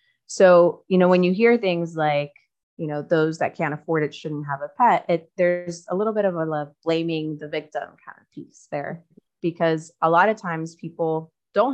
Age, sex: 20-39, female